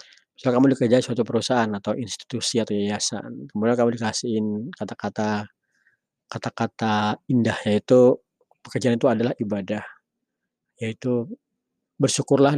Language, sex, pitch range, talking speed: Indonesian, male, 110-135 Hz, 115 wpm